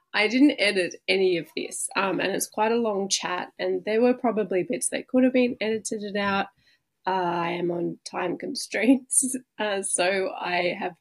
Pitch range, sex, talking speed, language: 180-235 Hz, female, 185 wpm, English